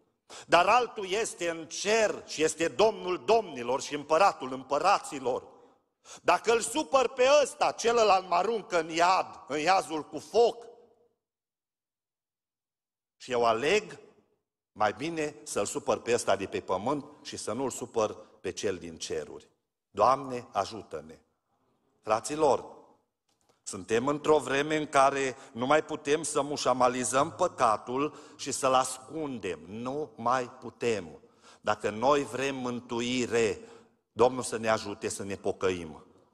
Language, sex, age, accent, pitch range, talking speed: Romanian, male, 50-69, native, 125-180 Hz, 125 wpm